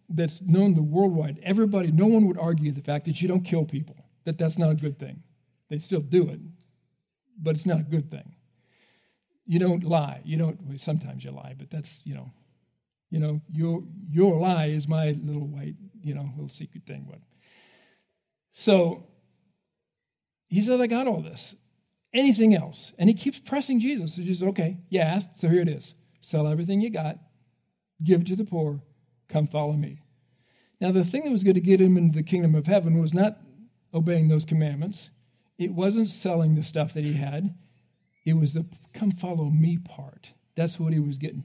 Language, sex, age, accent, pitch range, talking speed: English, male, 50-69, American, 150-185 Hz, 190 wpm